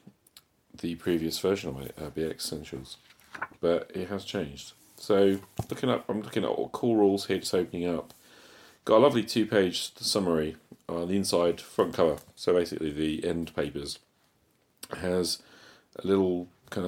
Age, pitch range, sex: 40-59, 80-100 Hz, male